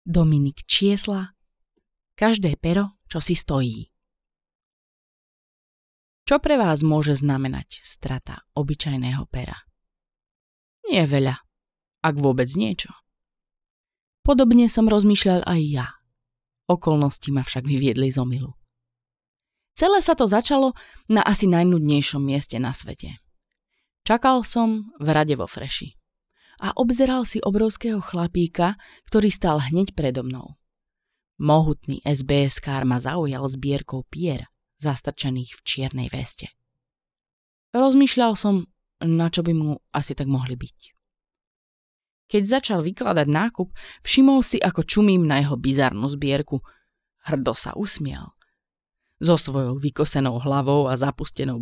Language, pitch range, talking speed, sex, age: Slovak, 135-200 Hz, 115 wpm, female, 20-39